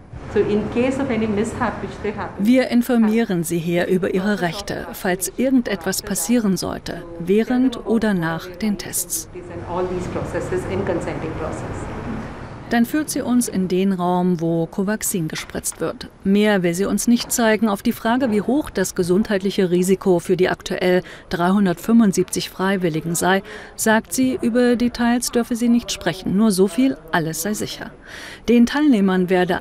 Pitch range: 180-225 Hz